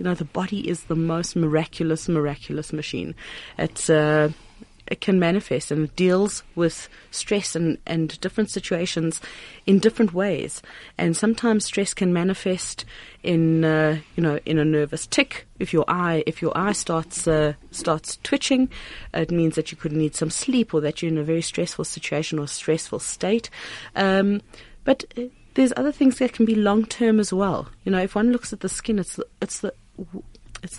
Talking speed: 180 wpm